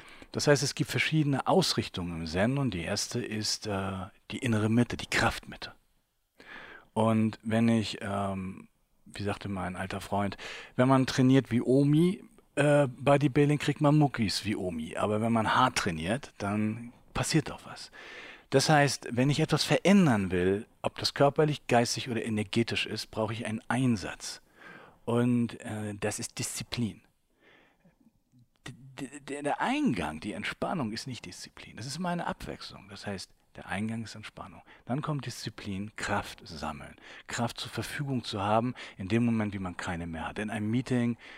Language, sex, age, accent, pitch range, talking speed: German, male, 40-59, German, 100-125 Hz, 160 wpm